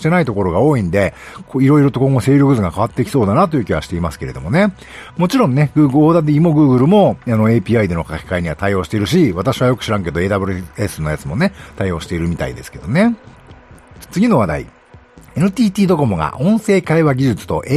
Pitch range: 105-175 Hz